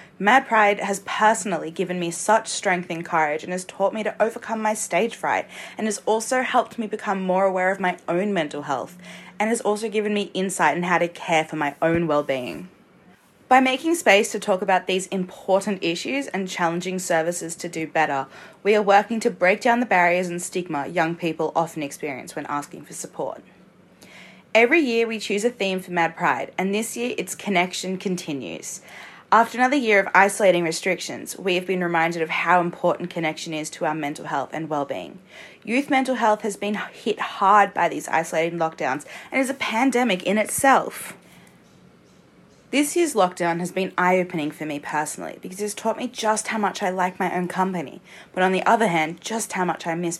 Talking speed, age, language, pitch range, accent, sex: 195 wpm, 20-39, English, 170-215 Hz, Australian, female